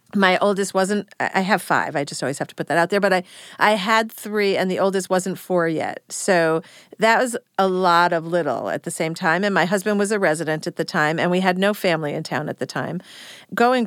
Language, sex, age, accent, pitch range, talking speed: English, female, 40-59, American, 175-215 Hz, 240 wpm